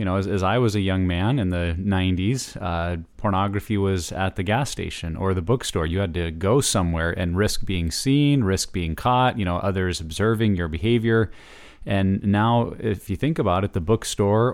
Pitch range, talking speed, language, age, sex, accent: 95-115 Hz, 200 wpm, English, 30-49, male, American